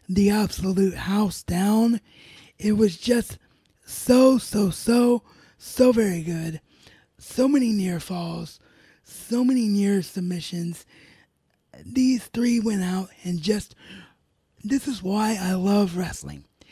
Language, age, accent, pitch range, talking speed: English, 20-39, American, 175-220 Hz, 120 wpm